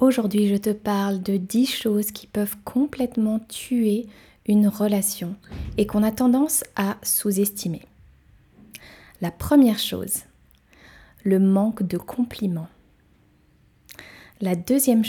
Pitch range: 190-230 Hz